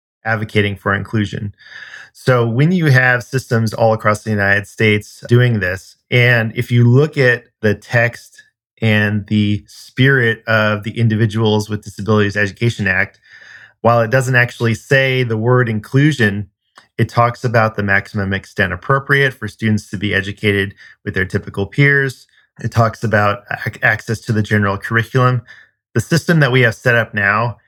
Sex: male